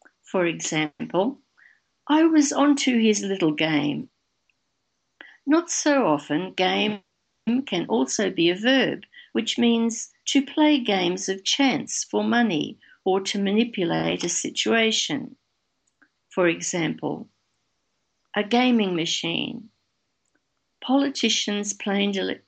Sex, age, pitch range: female, 60-79, 175-265 Hz